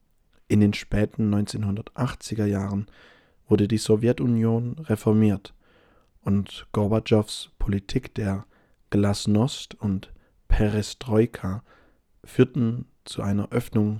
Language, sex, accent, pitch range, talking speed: English, male, German, 100-110 Hz, 85 wpm